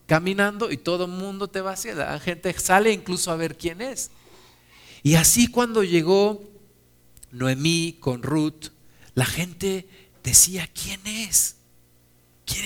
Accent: Mexican